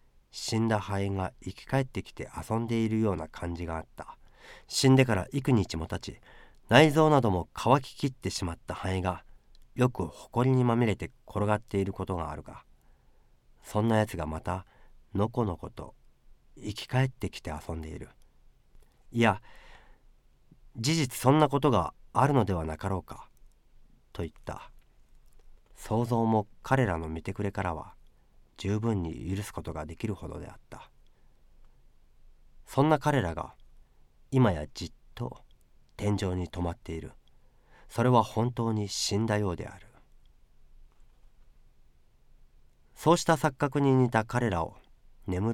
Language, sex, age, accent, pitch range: Japanese, male, 40-59, native, 85-120 Hz